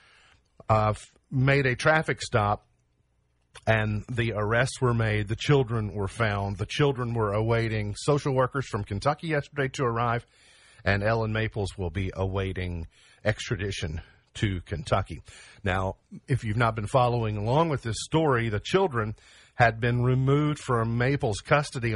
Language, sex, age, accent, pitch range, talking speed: English, male, 50-69, American, 105-135 Hz, 140 wpm